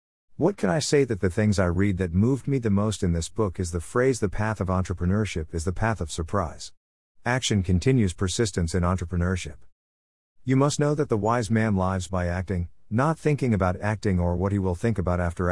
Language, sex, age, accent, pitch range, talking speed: English, male, 50-69, American, 85-120 Hz, 215 wpm